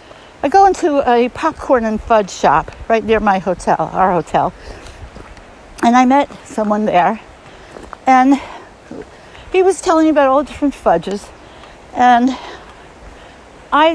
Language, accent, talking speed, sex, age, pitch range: English, American, 135 wpm, female, 60-79, 210-285 Hz